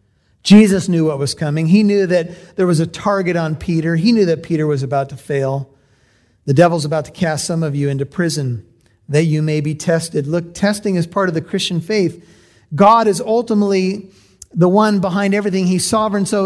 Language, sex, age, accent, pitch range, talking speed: English, male, 40-59, American, 160-205 Hz, 200 wpm